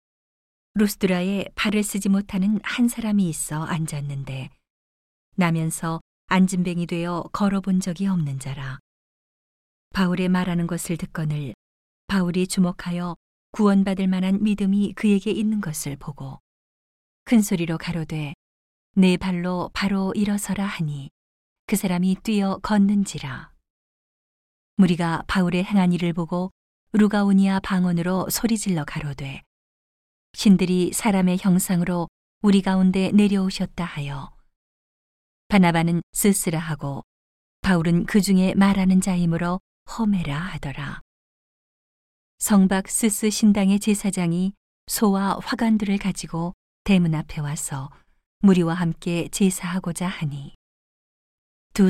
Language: Korean